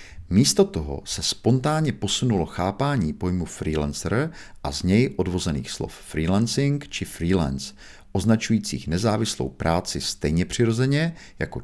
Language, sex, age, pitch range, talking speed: Czech, male, 50-69, 80-100 Hz, 115 wpm